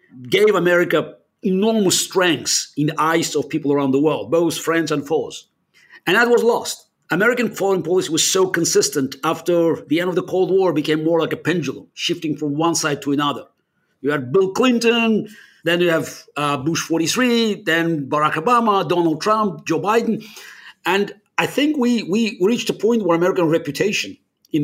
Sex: male